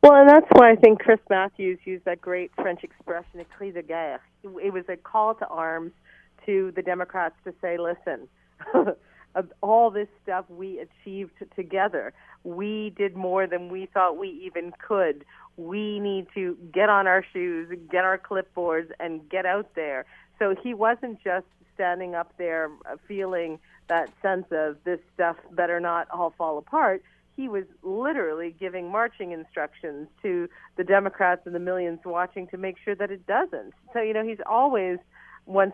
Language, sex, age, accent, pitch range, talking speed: English, female, 40-59, American, 170-195 Hz, 170 wpm